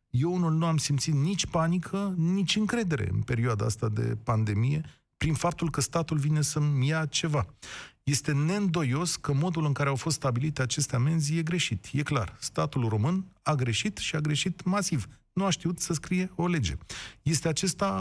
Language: Romanian